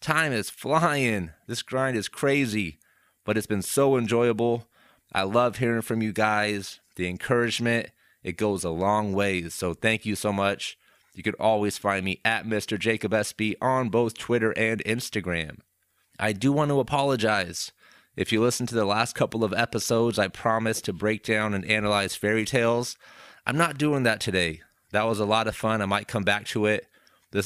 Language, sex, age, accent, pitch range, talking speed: English, male, 30-49, American, 100-120 Hz, 185 wpm